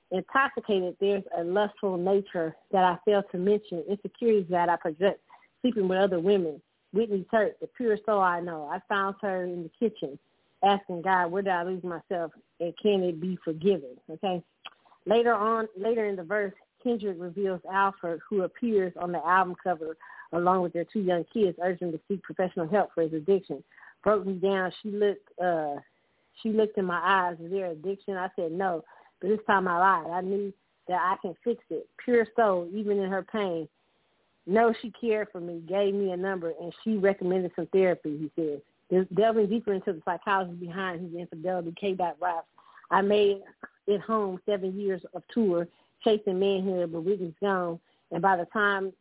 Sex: female